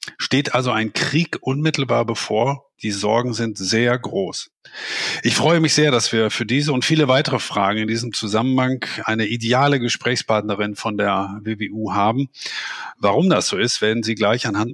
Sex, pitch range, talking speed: male, 110-135 Hz, 165 wpm